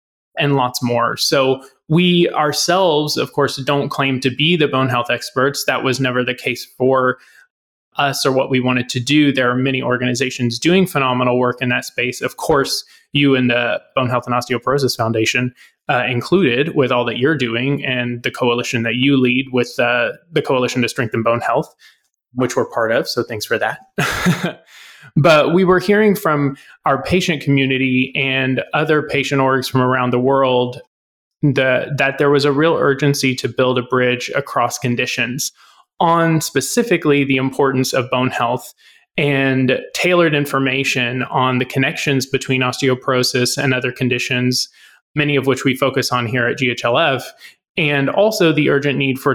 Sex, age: male, 20-39